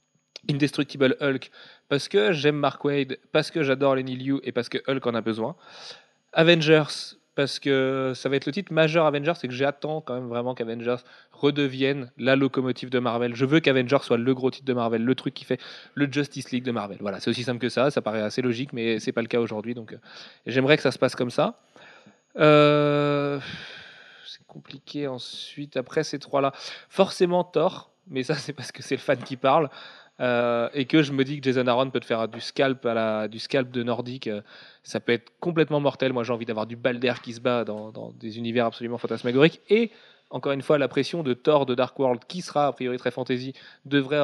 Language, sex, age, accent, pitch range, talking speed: French, male, 20-39, French, 120-150 Hz, 220 wpm